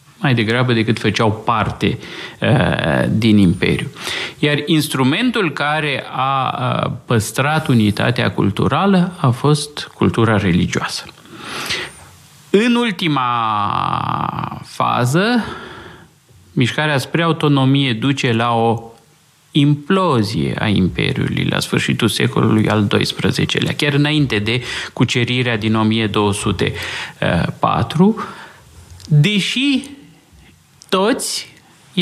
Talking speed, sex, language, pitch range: 80 wpm, male, Romanian, 115-160 Hz